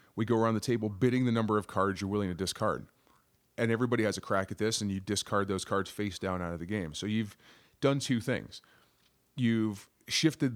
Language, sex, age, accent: English, male, 30-49, American